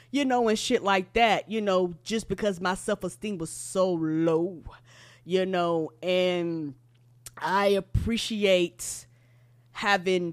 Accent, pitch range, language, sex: American, 160-200 Hz, English, female